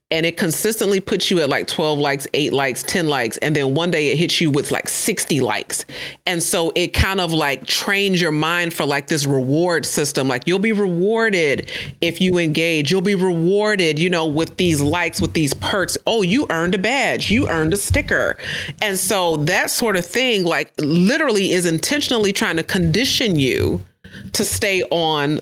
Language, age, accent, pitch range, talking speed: English, 40-59, American, 155-200 Hz, 195 wpm